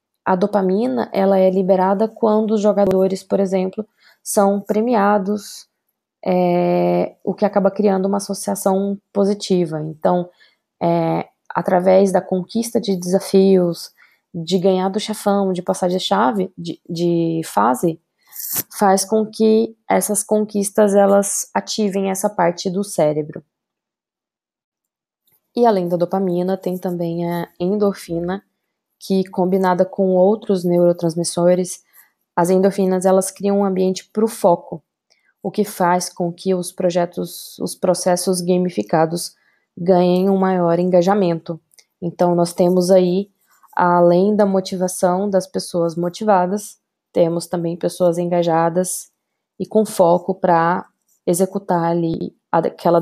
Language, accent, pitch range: Portuguese, Brazilian, 175-200 Hz